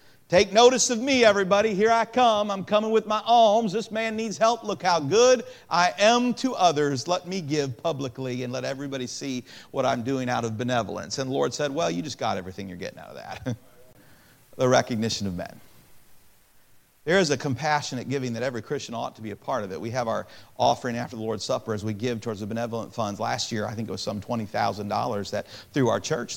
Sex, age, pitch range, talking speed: male, 40-59, 115-165 Hz, 225 wpm